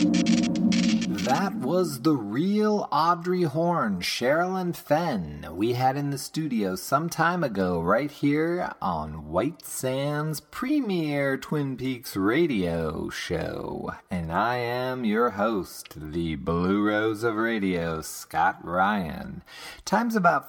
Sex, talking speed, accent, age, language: male, 115 wpm, American, 30-49, English